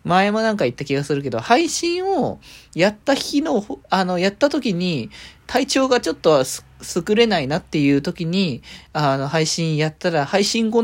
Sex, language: male, Japanese